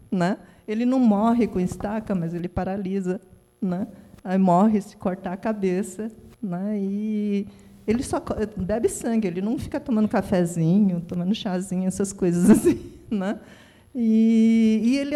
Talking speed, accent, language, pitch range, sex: 145 wpm, Brazilian, Portuguese, 200-235 Hz, female